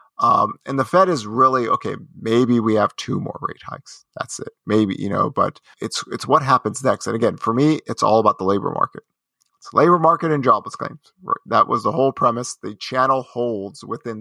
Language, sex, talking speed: English, male, 215 wpm